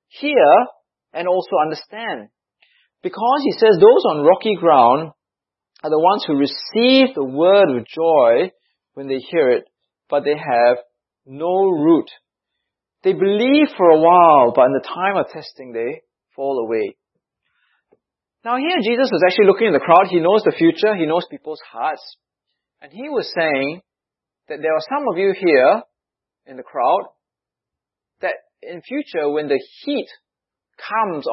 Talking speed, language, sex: 155 wpm, English, male